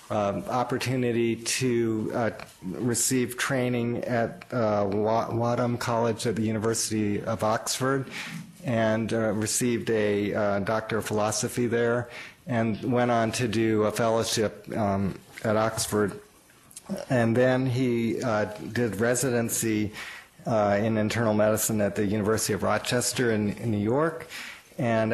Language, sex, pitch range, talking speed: English, male, 110-125 Hz, 130 wpm